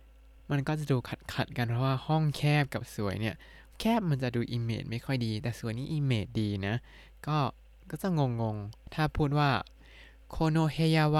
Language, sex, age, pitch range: Thai, male, 20-39, 110-150 Hz